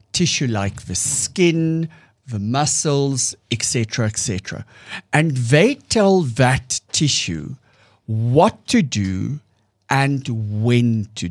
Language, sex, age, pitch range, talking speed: English, male, 60-79, 110-140 Hz, 100 wpm